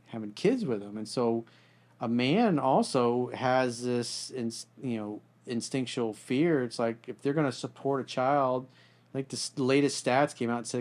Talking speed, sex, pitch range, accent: 180 wpm, male, 115-145 Hz, American